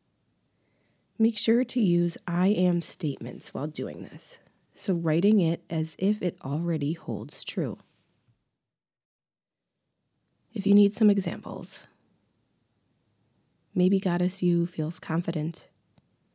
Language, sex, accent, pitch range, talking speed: English, female, American, 155-190 Hz, 105 wpm